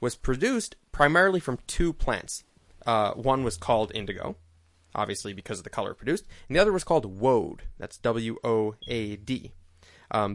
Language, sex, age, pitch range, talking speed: English, male, 20-39, 110-140 Hz, 150 wpm